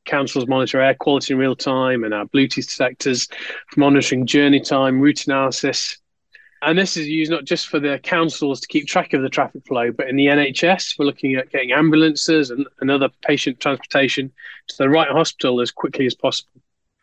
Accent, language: British, English